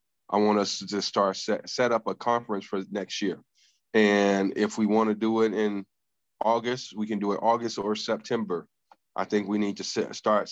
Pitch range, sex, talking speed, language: 95-105 Hz, male, 205 wpm, English